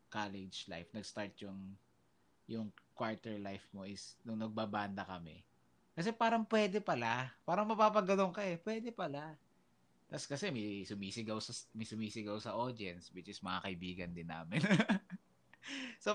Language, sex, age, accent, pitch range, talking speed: Filipino, male, 20-39, native, 95-150 Hz, 140 wpm